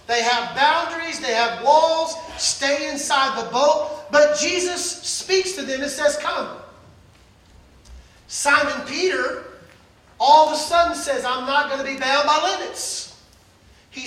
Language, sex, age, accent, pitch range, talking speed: English, male, 40-59, American, 270-340 Hz, 145 wpm